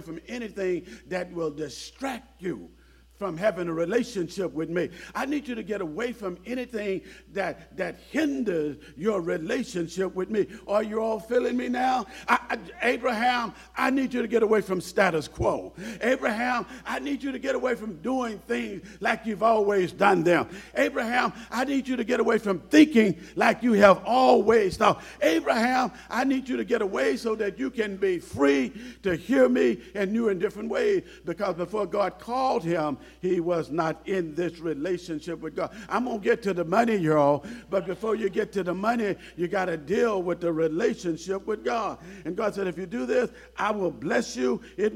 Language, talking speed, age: English, 190 wpm, 50-69